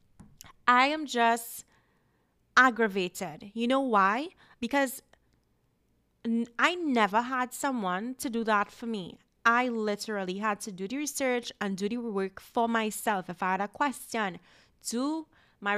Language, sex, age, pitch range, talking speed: English, female, 20-39, 195-255 Hz, 140 wpm